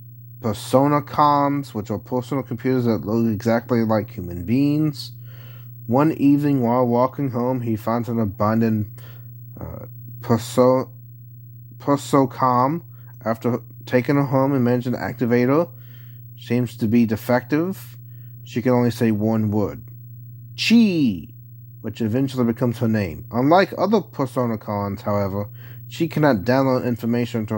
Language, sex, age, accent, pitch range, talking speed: English, male, 30-49, American, 115-125 Hz, 130 wpm